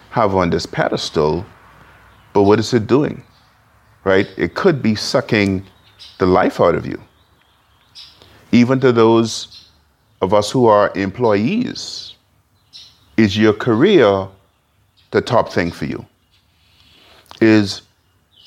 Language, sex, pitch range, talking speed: English, male, 95-110 Hz, 115 wpm